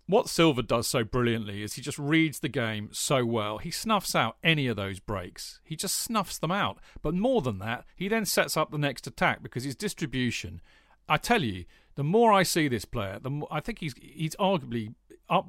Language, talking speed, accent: English, 215 wpm, British